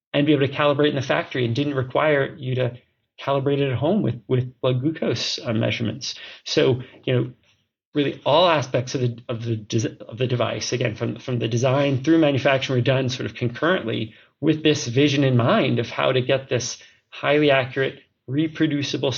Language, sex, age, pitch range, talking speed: English, male, 30-49, 120-140 Hz, 195 wpm